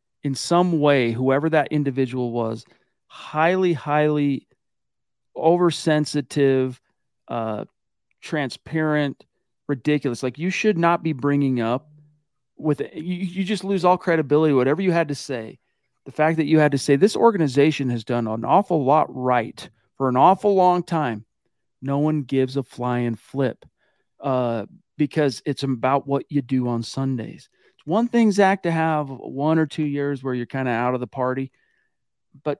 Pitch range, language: 130-170 Hz, English